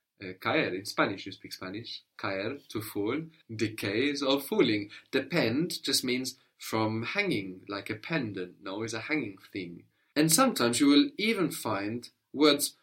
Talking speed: 155 wpm